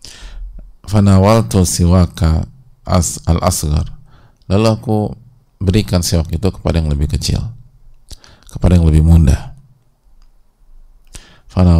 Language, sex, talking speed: English, male, 100 wpm